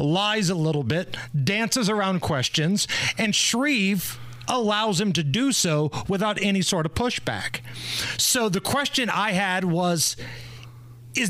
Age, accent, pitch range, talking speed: 40-59, American, 135-210 Hz, 140 wpm